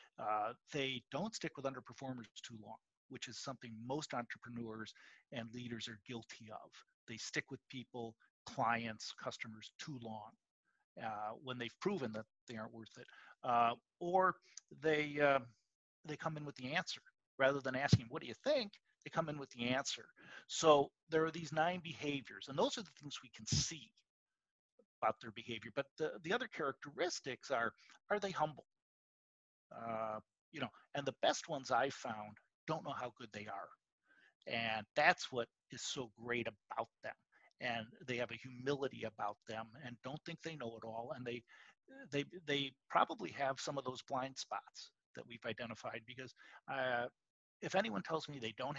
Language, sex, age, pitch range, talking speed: English, male, 50-69, 115-150 Hz, 175 wpm